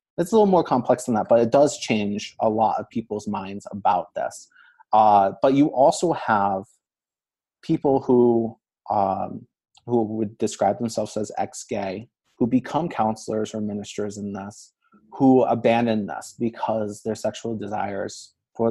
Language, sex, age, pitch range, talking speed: English, male, 30-49, 105-120 Hz, 150 wpm